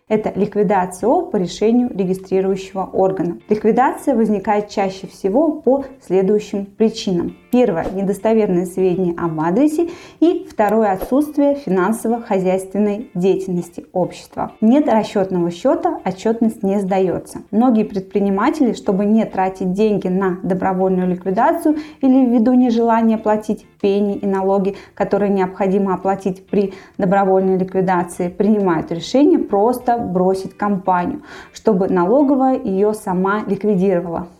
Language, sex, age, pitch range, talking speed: Russian, female, 20-39, 190-235 Hz, 110 wpm